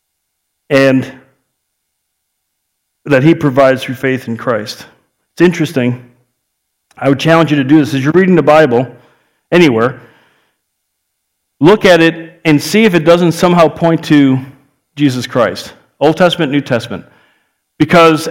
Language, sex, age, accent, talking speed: English, male, 40-59, American, 135 wpm